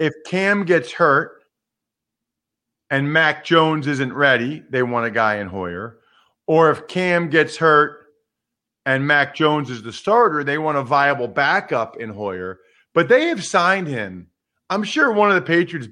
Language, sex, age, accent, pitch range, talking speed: English, male, 40-59, American, 130-175 Hz, 165 wpm